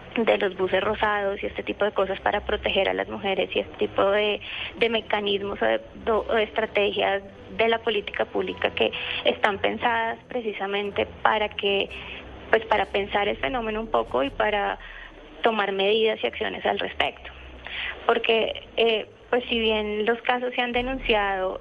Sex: female